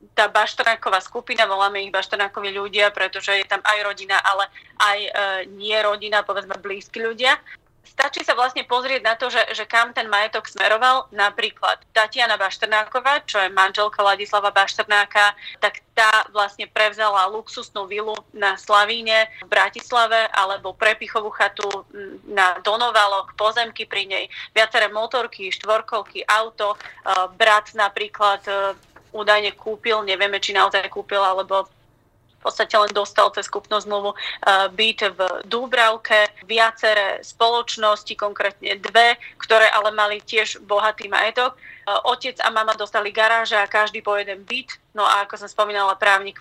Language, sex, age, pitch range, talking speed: Slovak, female, 30-49, 200-225 Hz, 140 wpm